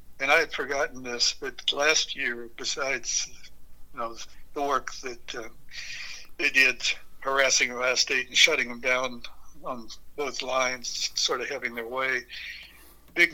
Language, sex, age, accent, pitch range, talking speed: English, male, 60-79, American, 120-140 Hz, 150 wpm